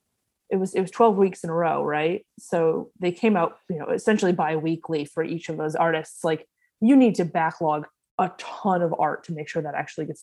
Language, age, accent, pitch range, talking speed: English, 20-39, American, 165-215 Hz, 225 wpm